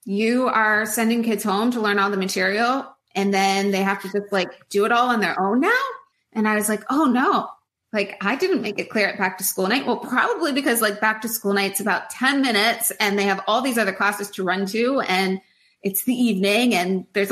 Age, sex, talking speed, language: 20-39, female, 235 wpm, English